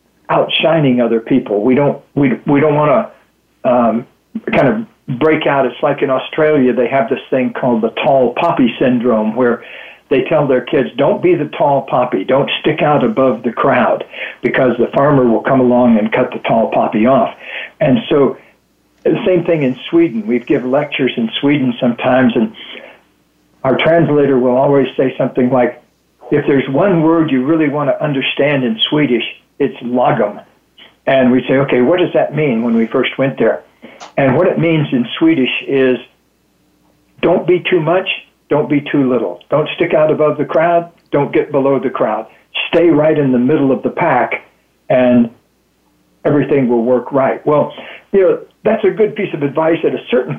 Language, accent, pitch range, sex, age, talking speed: English, American, 125-165 Hz, male, 60-79, 185 wpm